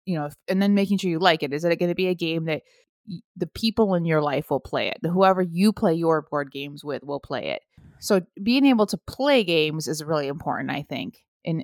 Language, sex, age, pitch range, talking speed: English, female, 20-39, 155-210 Hz, 240 wpm